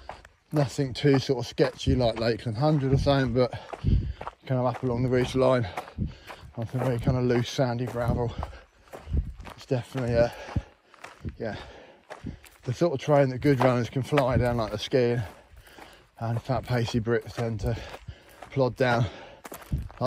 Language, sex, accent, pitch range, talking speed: English, male, British, 110-130 Hz, 155 wpm